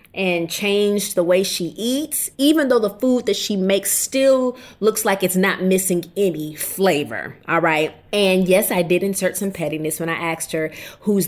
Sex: female